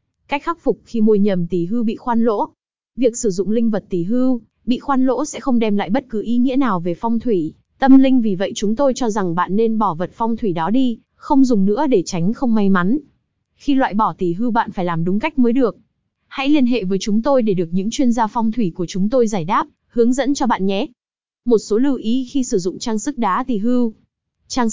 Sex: female